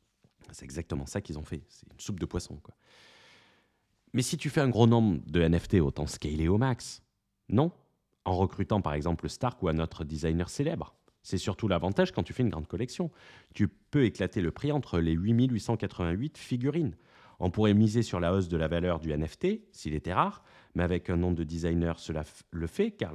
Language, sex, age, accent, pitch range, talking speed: French, male, 30-49, French, 90-145 Hz, 200 wpm